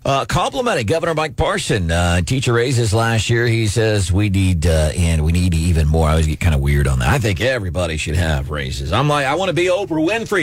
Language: English